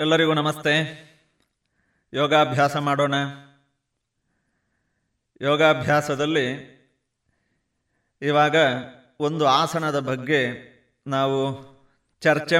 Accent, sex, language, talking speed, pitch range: native, male, Kannada, 50 wpm, 135-170 Hz